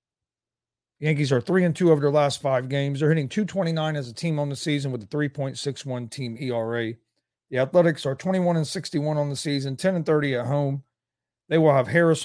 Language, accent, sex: English, American, male